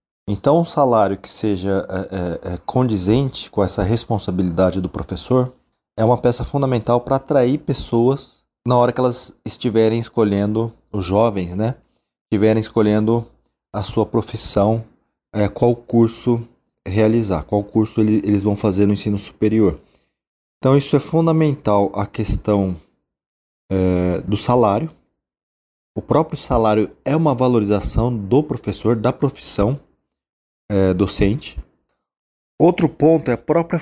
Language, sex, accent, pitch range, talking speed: Portuguese, male, Brazilian, 100-125 Hz, 125 wpm